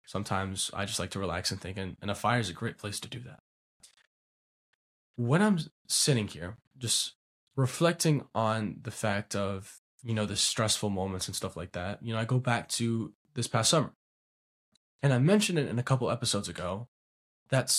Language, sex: English, male